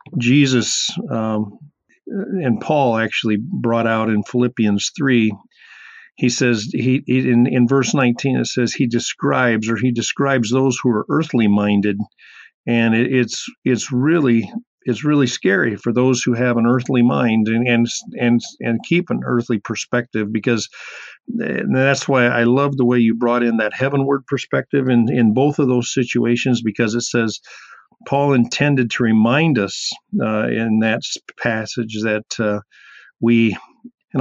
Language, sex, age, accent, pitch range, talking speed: English, male, 50-69, American, 115-130 Hz, 155 wpm